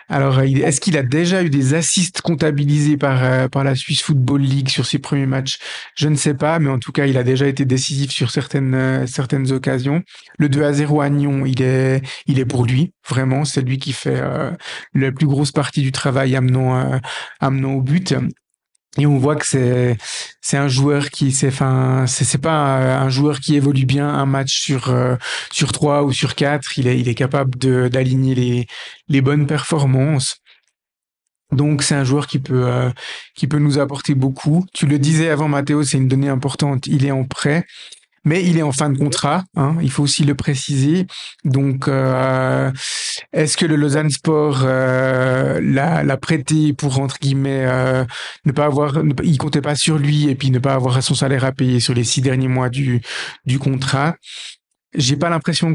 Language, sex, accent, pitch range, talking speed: French, male, French, 130-150 Hz, 200 wpm